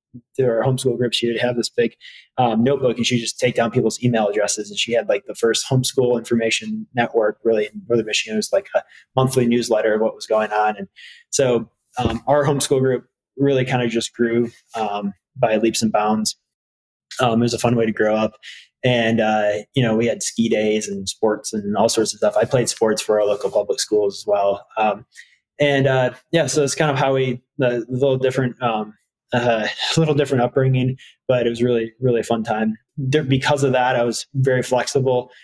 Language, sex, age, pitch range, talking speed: English, male, 20-39, 110-130 Hz, 215 wpm